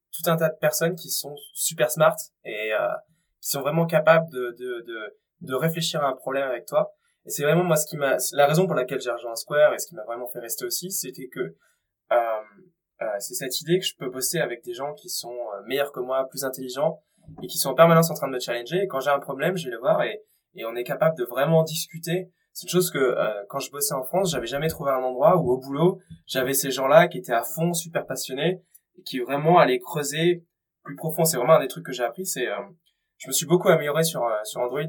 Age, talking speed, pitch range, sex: 20-39, 255 wpm, 130-180 Hz, male